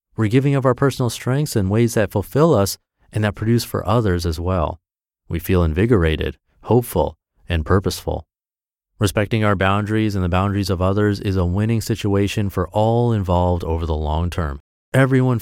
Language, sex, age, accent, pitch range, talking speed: English, male, 30-49, American, 90-115 Hz, 170 wpm